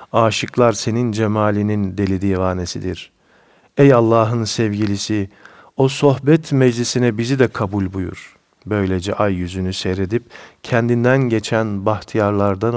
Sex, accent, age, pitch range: male, native, 50-69, 95-115 Hz